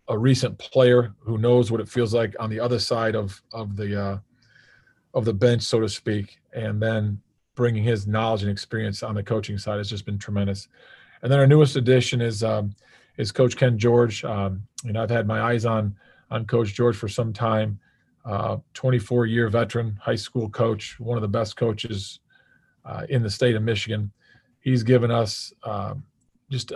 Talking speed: 190 wpm